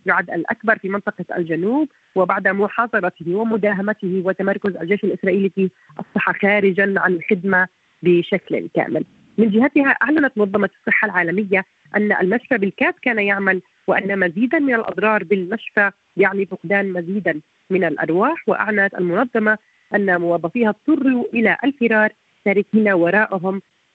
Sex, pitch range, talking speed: female, 190-225 Hz, 120 wpm